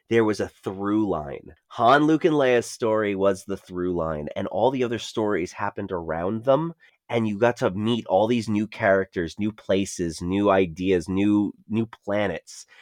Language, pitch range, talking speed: English, 100-130 Hz, 180 wpm